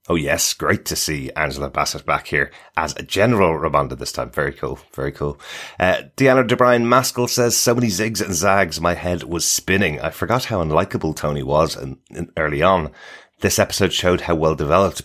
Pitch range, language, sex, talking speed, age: 80-110 Hz, English, male, 190 wpm, 30-49